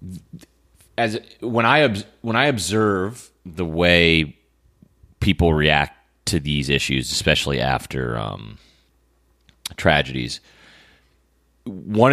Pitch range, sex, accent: 75-115 Hz, male, American